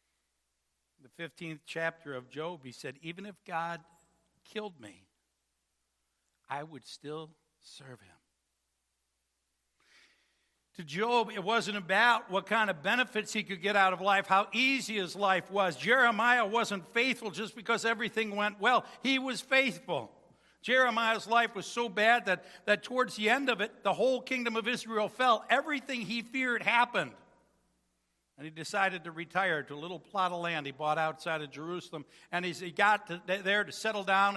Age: 60-79